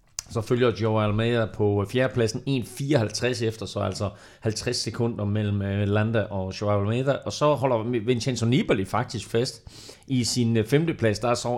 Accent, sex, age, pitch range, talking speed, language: native, male, 30-49, 105-135 Hz, 155 wpm, Danish